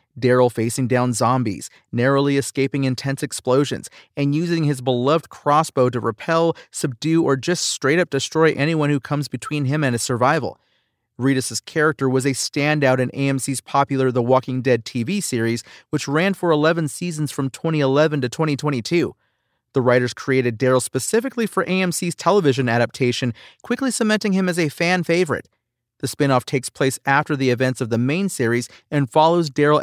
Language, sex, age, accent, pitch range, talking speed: English, male, 30-49, American, 125-160 Hz, 160 wpm